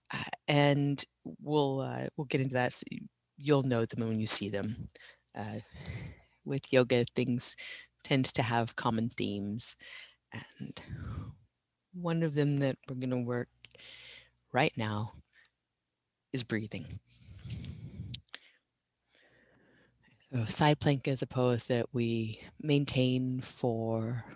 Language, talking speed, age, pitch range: English, 120 wpm, 30-49, 115-135 Hz